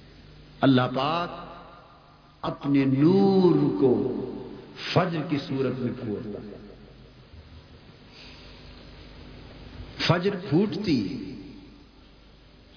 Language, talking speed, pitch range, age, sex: Urdu, 60 wpm, 130-200 Hz, 50-69, male